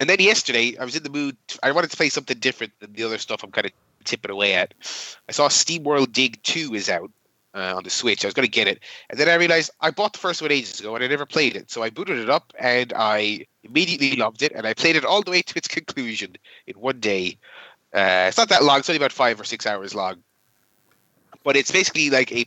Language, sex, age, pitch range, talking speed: English, male, 30-49, 110-145 Hz, 260 wpm